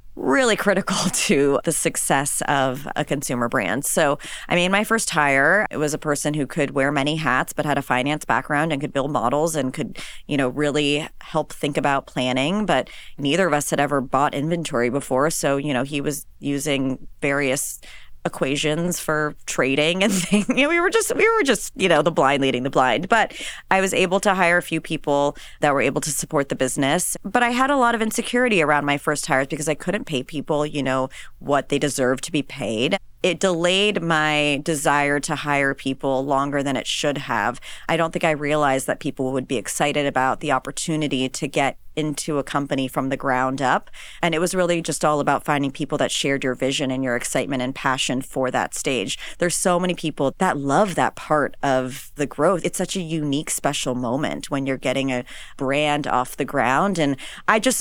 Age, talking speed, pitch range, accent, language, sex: 30-49, 205 wpm, 135-165 Hz, American, English, female